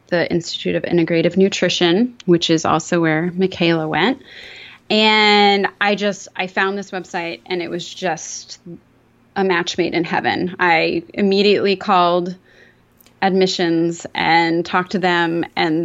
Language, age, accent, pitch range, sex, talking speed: English, 20-39, American, 170-205 Hz, female, 135 wpm